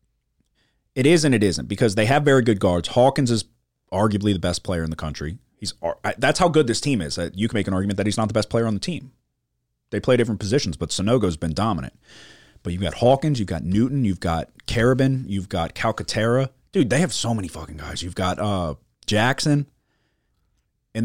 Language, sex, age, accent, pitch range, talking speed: English, male, 30-49, American, 90-120 Hz, 215 wpm